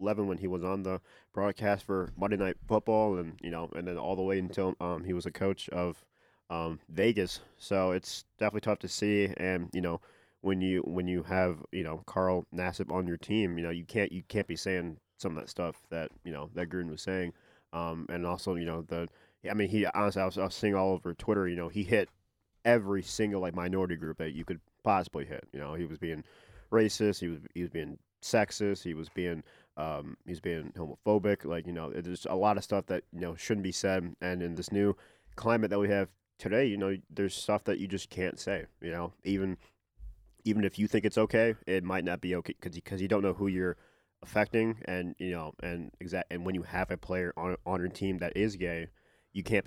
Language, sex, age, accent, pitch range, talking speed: English, male, 30-49, American, 85-100 Hz, 230 wpm